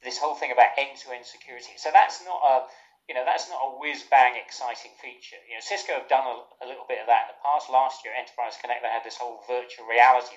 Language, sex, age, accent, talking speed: English, male, 40-59, British, 250 wpm